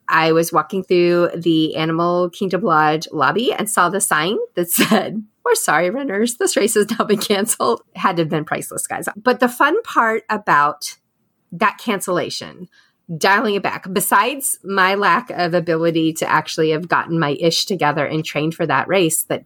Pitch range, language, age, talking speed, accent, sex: 170-215 Hz, English, 30-49, 180 wpm, American, female